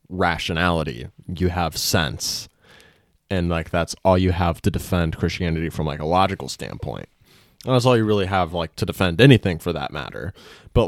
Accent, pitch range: American, 85-105 Hz